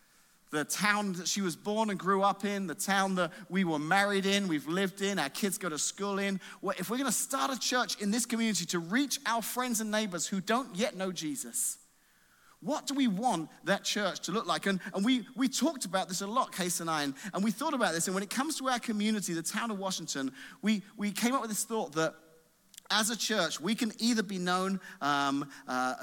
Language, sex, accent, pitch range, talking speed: English, male, British, 160-220 Hz, 235 wpm